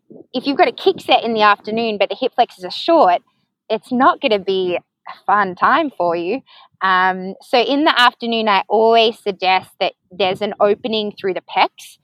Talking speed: 200 wpm